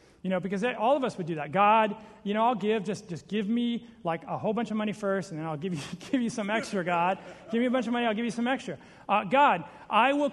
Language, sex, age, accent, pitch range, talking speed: English, male, 30-49, American, 170-210 Hz, 295 wpm